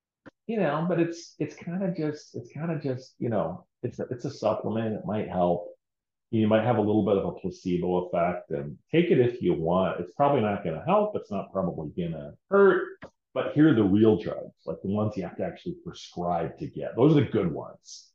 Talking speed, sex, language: 235 wpm, male, English